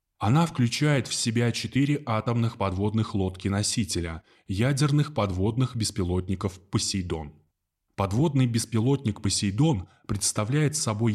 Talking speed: 95 wpm